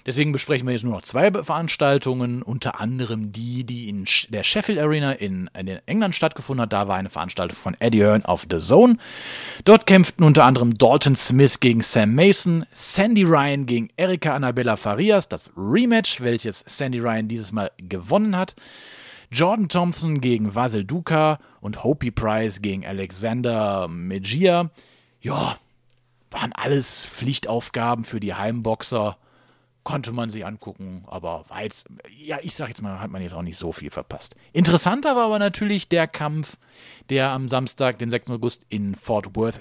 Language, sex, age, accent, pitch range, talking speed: German, male, 40-59, German, 110-155 Hz, 165 wpm